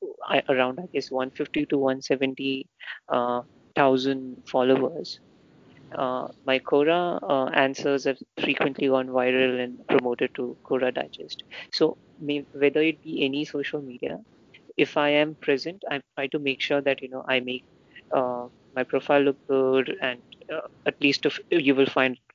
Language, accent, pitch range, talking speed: Hindi, native, 130-145 Hz, 160 wpm